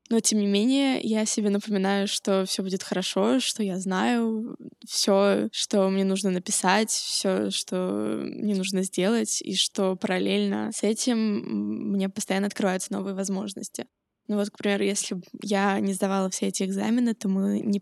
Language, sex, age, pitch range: Russian, female, 10-29, 195-215 Hz